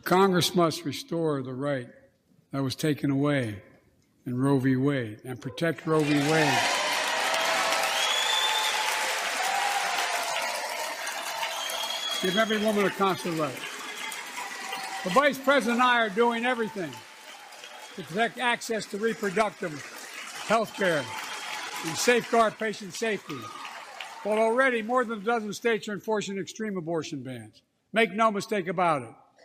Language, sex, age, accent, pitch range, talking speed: English, male, 60-79, American, 160-230 Hz, 120 wpm